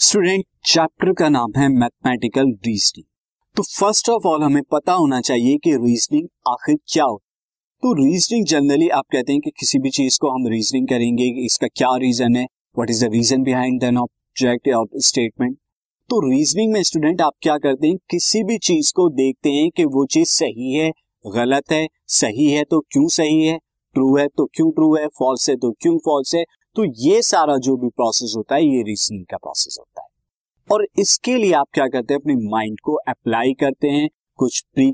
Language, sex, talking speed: Hindi, male, 195 wpm